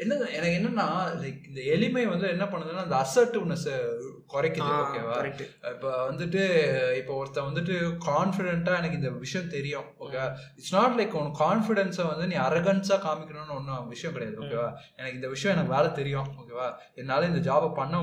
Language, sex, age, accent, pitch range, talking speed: Tamil, male, 20-39, native, 140-190 Hz, 130 wpm